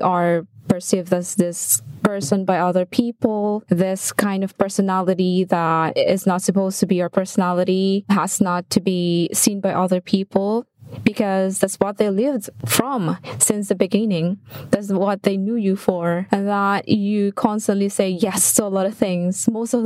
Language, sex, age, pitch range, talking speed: English, female, 20-39, 185-235 Hz, 170 wpm